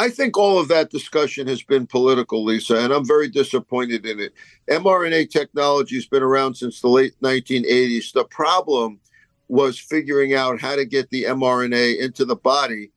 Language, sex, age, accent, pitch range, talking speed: English, male, 50-69, American, 125-155 Hz, 175 wpm